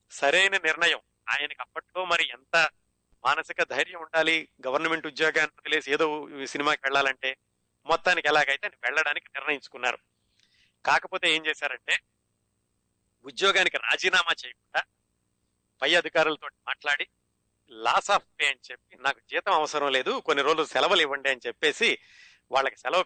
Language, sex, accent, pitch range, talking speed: Telugu, male, native, 135-165 Hz, 120 wpm